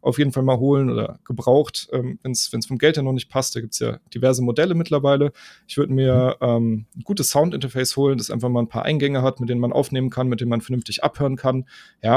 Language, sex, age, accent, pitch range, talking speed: German, male, 30-49, German, 120-145 Hz, 250 wpm